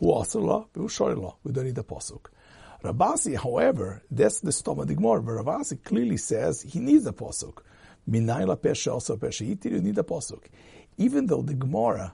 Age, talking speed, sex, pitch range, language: 60-79, 140 wpm, male, 105-160 Hz, English